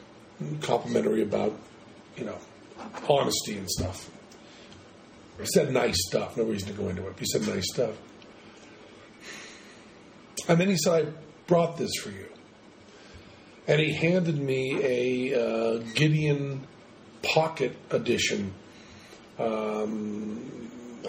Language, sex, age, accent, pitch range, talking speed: English, male, 50-69, American, 115-155 Hz, 115 wpm